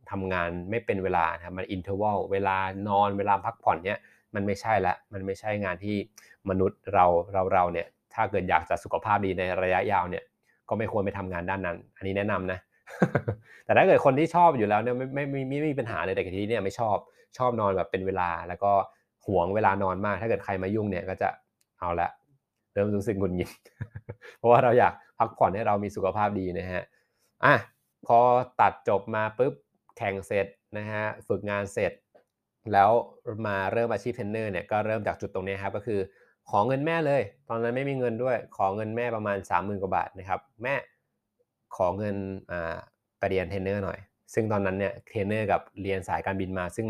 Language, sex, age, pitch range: Thai, male, 20-39, 95-110 Hz